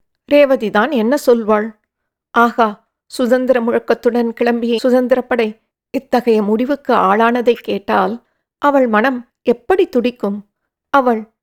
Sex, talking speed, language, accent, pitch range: female, 90 wpm, English, Indian, 220-270 Hz